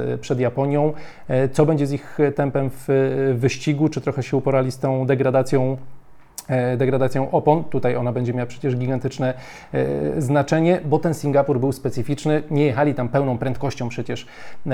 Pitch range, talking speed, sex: 125-145 Hz, 145 wpm, male